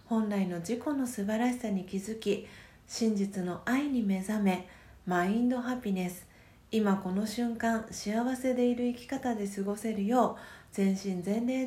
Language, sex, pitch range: Japanese, female, 190-235 Hz